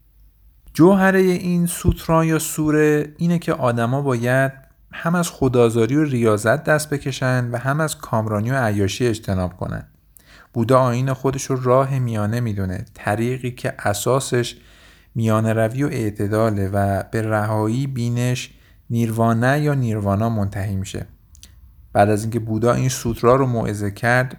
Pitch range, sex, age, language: 105-135 Hz, male, 50-69, Persian